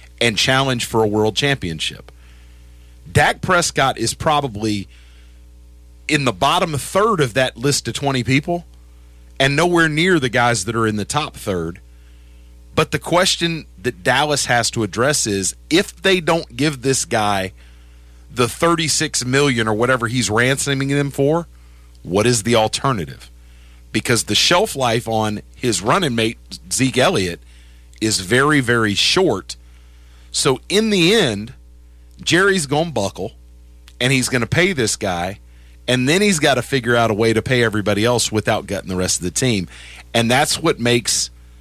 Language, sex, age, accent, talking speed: English, male, 40-59, American, 160 wpm